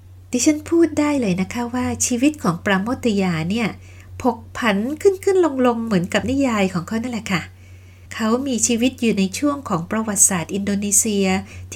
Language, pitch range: Thai, 180-260 Hz